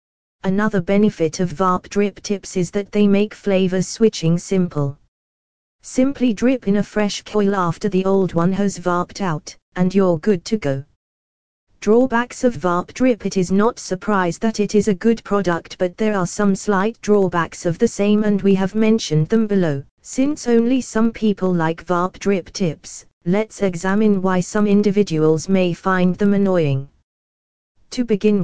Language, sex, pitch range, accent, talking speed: English, female, 165-210 Hz, British, 165 wpm